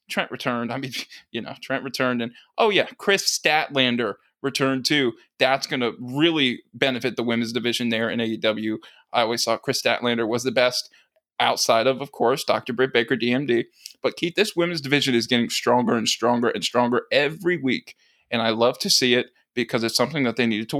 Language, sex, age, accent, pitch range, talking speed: English, male, 20-39, American, 120-145 Hz, 195 wpm